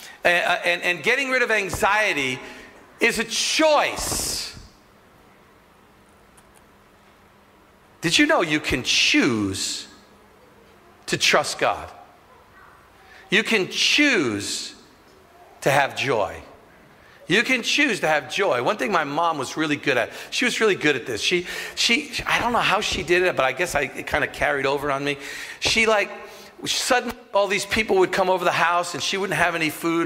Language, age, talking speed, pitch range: English, 50-69, 165 wpm, 170-255 Hz